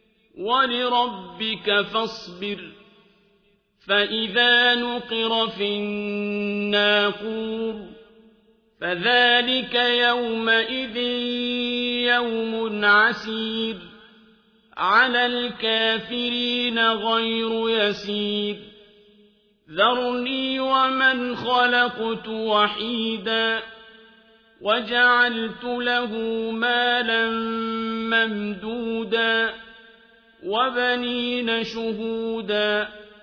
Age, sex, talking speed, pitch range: 50-69, male, 45 wpm, 215-245 Hz